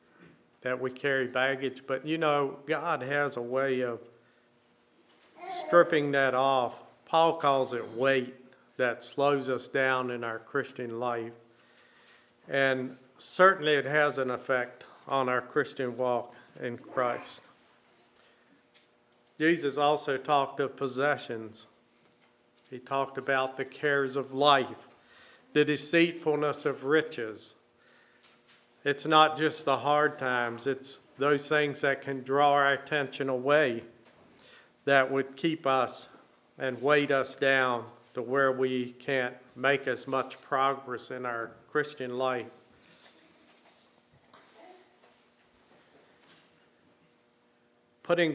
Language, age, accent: English, 50-69, American